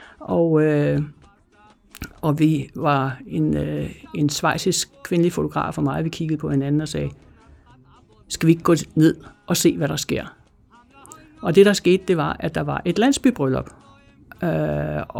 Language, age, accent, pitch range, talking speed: Danish, 60-79, native, 145-175 Hz, 165 wpm